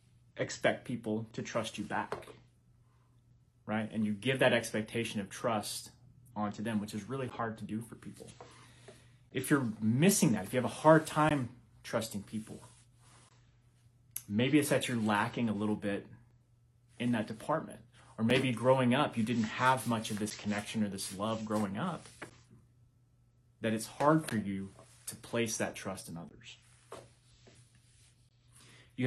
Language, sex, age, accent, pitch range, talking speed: English, male, 30-49, American, 110-125 Hz, 155 wpm